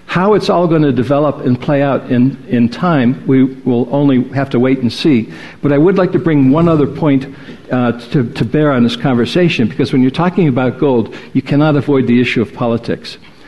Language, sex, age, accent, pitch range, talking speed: English, male, 60-79, American, 125-155 Hz, 215 wpm